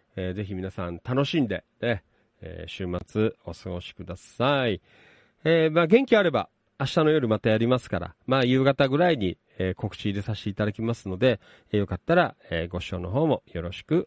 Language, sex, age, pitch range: Japanese, male, 40-59, 100-155 Hz